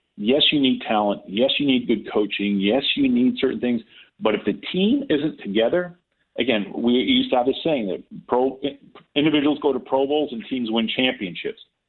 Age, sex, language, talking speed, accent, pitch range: 40-59, male, English, 190 wpm, American, 105-150 Hz